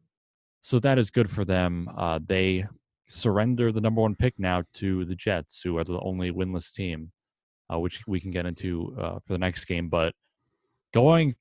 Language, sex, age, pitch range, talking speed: English, male, 20-39, 90-115 Hz, 190 wpm